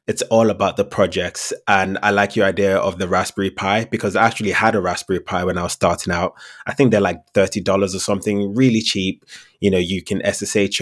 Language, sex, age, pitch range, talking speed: English, male, 20-39, 95-110 Hz, 220 wpm